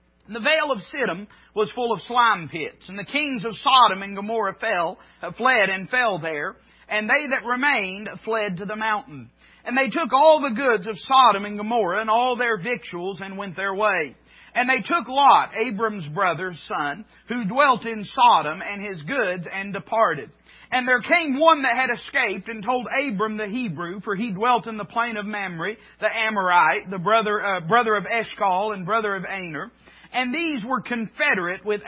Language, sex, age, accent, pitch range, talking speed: English, male, 40-59, American, 195-245 Hz, 190 wpm